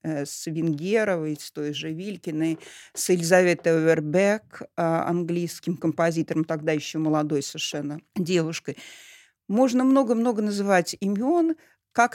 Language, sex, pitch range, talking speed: Russian, female, 170-240 Hz, 105 wpm